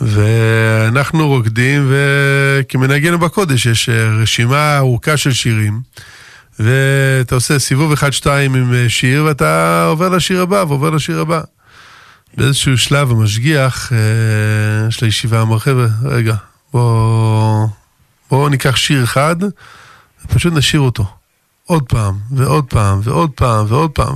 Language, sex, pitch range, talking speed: Hebrew, male, 120-155 Hz, 95 wpm